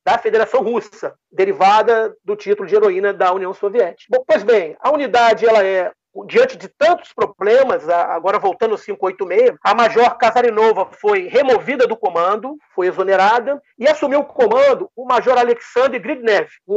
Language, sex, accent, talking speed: Portuguese, male, Brazilian, 155 wpm